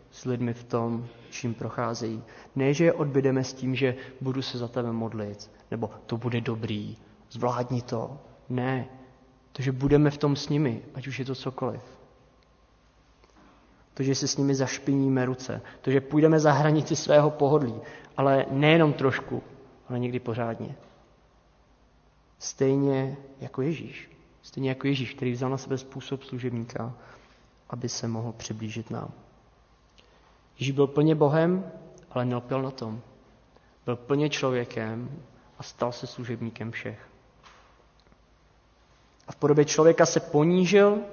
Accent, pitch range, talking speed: native, 120-145 Hz, 140 wpm